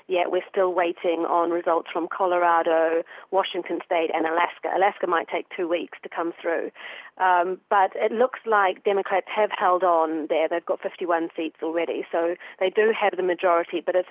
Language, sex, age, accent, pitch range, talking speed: English, female, 40-59, British, 175-205 Hz, 185 wpm